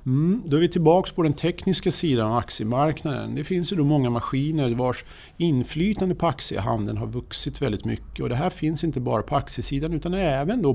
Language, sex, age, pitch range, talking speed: Swedish, male, 50-69, 125-165 Hz, 200 wpm